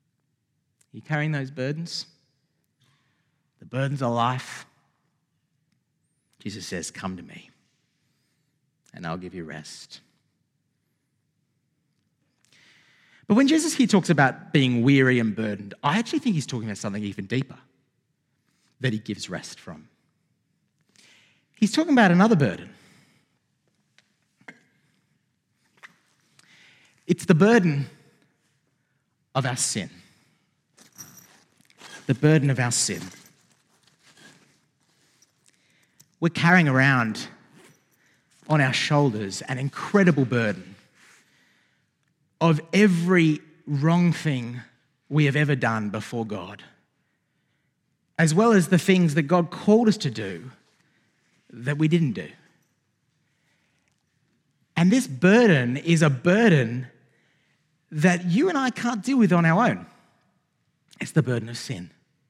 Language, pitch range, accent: English, 130-170 Hz, Australian